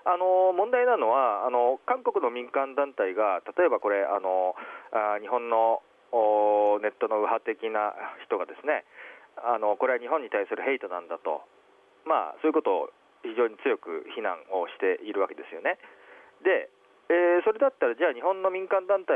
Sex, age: male, 40-59